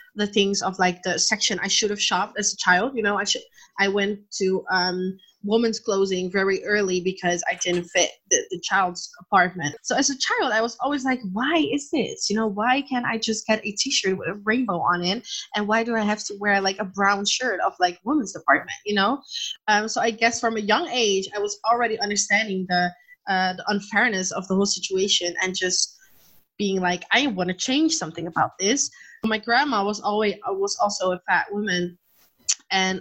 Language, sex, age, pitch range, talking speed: English, female, 20-39, 185-220 Hz, 210 wpm